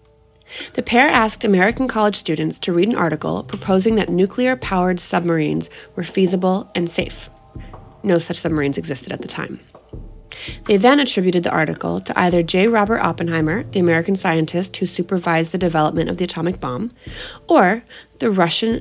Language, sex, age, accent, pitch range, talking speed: English, female, 30-49, American, 165-225 Hz, 155 wpm